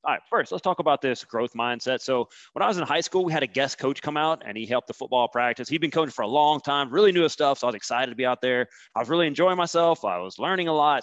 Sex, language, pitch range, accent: male, English, 120-160 Hz, American